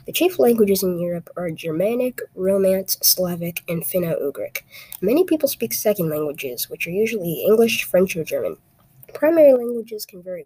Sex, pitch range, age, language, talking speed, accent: female, 155-210 Hz, 20-39, English, 155 wpm, American